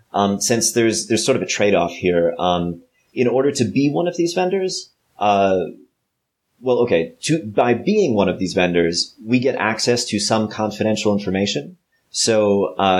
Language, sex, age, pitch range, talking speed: English, male, 30-49, 90-110 Hz, 170 wpm